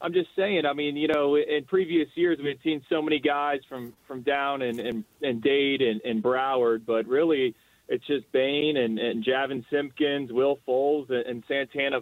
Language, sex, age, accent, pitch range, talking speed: English, male, 30-49, American, 125-145 Hz, 190 wpm